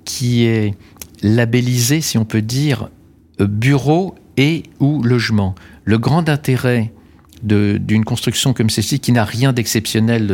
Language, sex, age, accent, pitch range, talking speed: French, male, 50-69, French, 110-130 Hz, 135 wpm